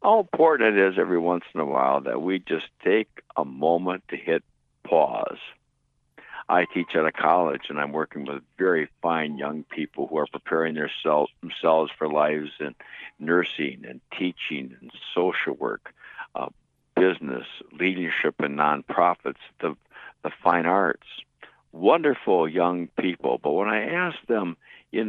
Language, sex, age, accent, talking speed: English, male, 60-79, American, 150 wpm